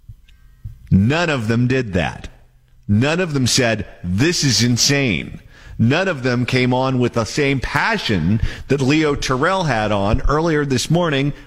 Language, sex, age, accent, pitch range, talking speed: English, male, 50-69, American, 110-165 Hz, 150 wpm